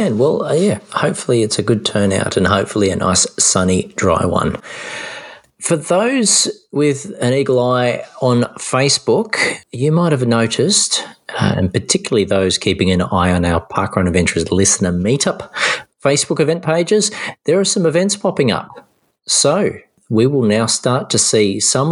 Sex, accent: male, Australian